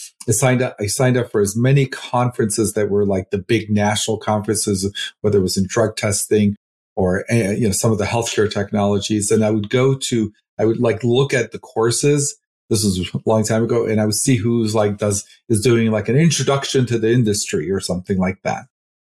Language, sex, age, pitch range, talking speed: English, male, 40-59, 105-120 Hz, 215 wpm